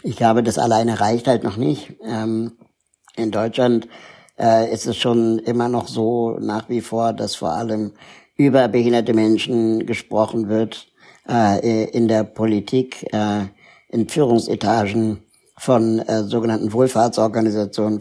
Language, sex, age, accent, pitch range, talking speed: German, male, 60-79, German, 110-125 Hz, 135 wpm